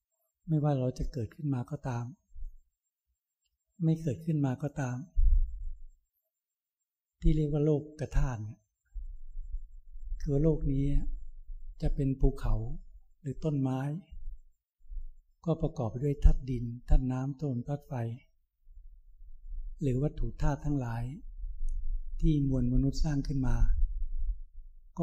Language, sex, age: Thai, male, 60-79